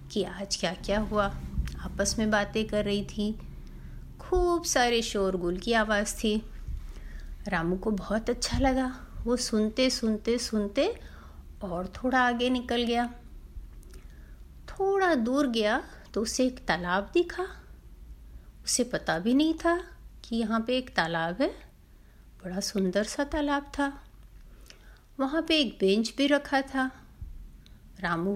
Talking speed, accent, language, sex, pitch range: 135 wpm, native, Hindi, female, 195-275 Hz